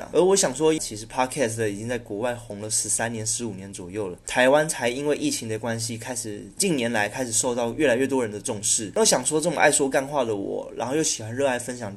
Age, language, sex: 20-39, Chinese, male